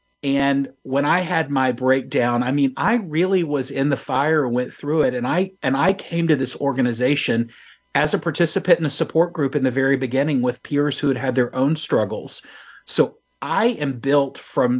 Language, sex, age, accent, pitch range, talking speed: English, male, 40-59, American, 125-155 Hz, 205 wpm